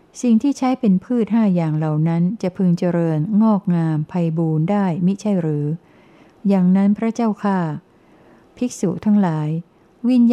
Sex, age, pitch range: female, 60-79, 165-205 Hz